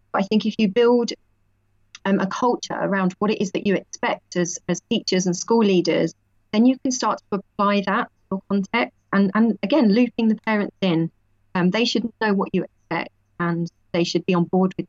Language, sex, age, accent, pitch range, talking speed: English, female, 30-49, British, 175-205 Hz, 205 wpm